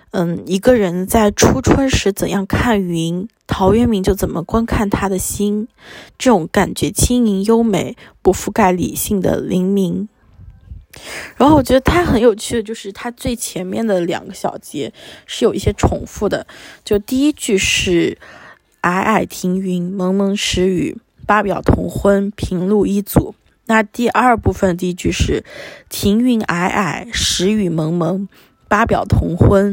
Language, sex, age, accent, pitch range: Chinese, female, 20-39, native, 185-230 Hz